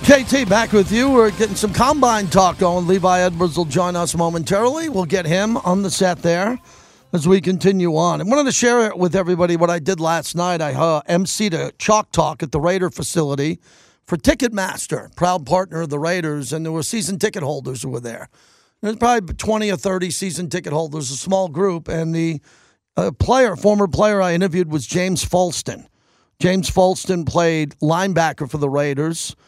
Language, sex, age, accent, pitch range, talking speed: English, male, 50-69, American, 160-195 Hz, 190 wpm